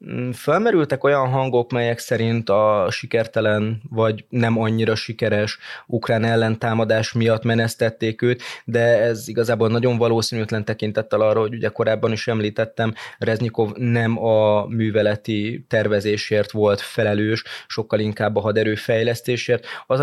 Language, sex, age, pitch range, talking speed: Hungarian, male, 20-39, 105-115 Hz, 125 wpm